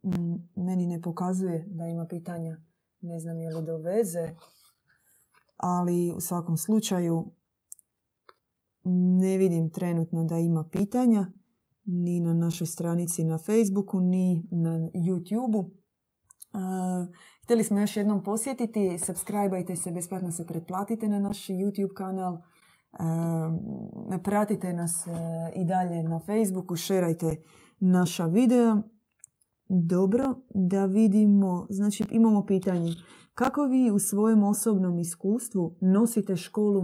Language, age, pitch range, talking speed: Croatian, 20-39, 170-205 Hz, 115 wpm